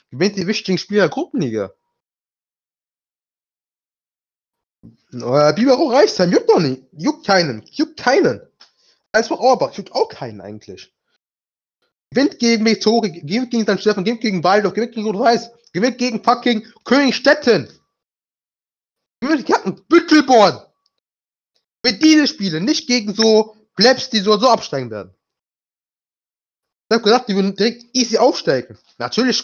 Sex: male